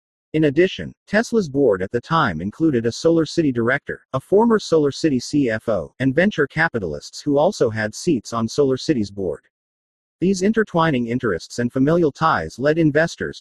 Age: 40-59